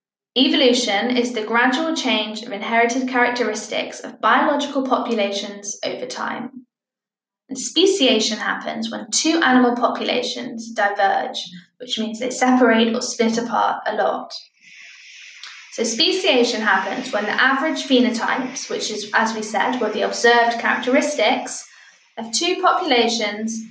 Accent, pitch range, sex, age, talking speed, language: British, 220-255 Hz, female, 10-29, 120 wpm, English